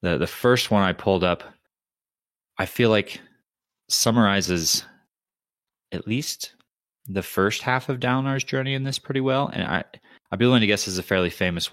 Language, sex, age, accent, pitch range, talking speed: English, male, 30-49, American, 85-115 Hz, 180 wpm